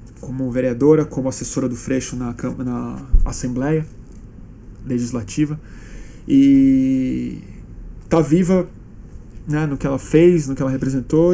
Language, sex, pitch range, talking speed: Portuguese, male, 125-155 Hz, 115 wpm